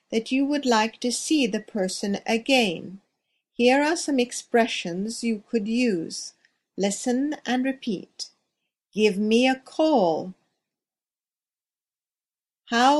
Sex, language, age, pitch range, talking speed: female, English, 50-69, 195-260 Hz, 110 wpm